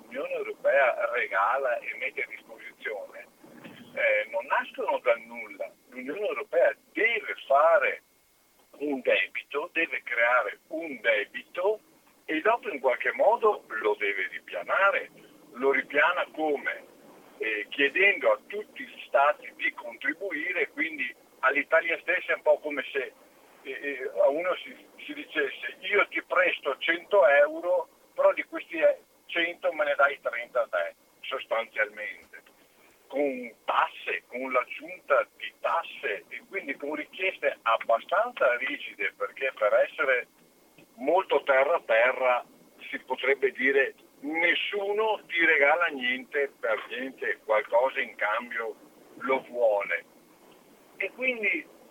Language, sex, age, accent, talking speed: Italian, male, 50-69, native, 125 wpm